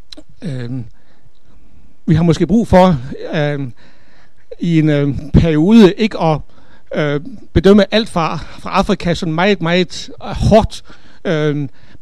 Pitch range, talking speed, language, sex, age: 150-195 Hz, 115 wpm, Danish, male, 60-79